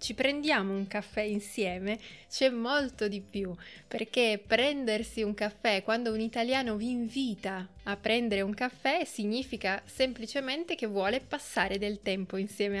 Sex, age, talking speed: female, 20-39, 140 wpm